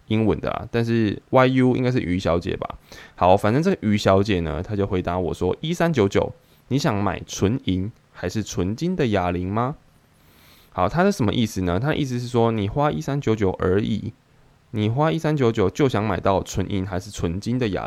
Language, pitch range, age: Chinese, 90-125 Hz, 20-39